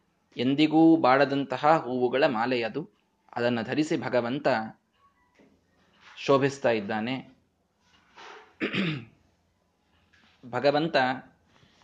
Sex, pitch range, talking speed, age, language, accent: male, 120-155 Hz, 50 wpm, 20-39, Kannada, native